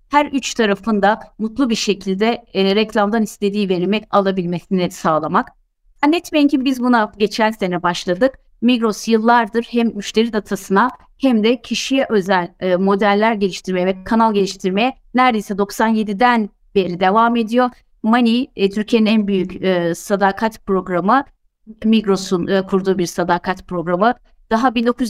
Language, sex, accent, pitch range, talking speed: Turkish, female, native, 195-235 Hz, 130 wpm